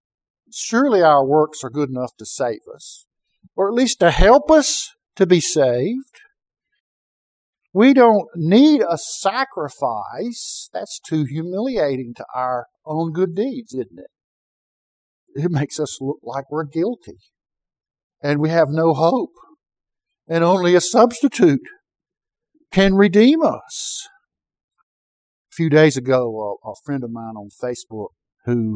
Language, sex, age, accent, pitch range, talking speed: English, male, 50-69, American, 125-200 Hz, 130 wpm